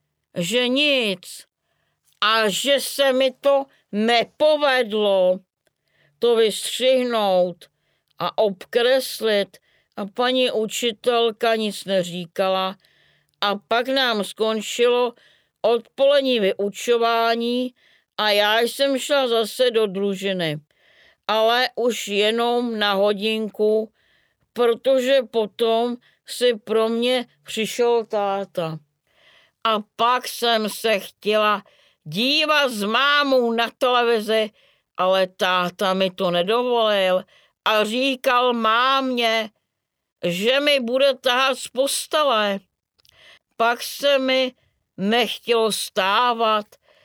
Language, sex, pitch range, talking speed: Czech, female, 205-250 Hz, 90 wpm